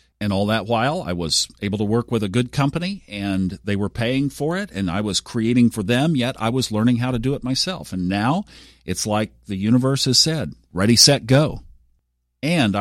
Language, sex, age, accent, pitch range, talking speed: English, male, 50-69, American, 85-125 Hz, 215 wpm